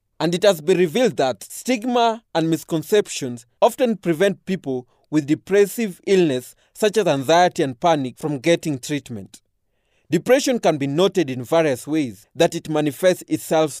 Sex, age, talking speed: male, 30-49, 150 wpm